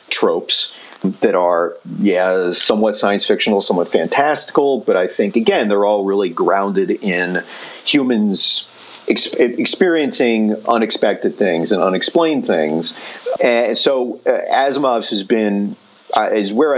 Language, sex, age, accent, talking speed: English, male, 40-59, American, 120 wpm